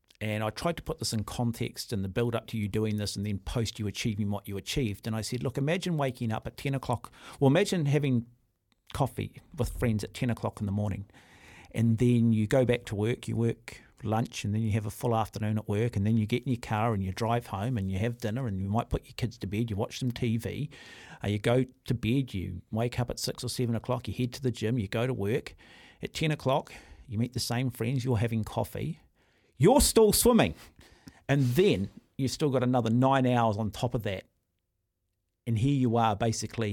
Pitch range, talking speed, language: 110-130 Hz, 235 wpm, English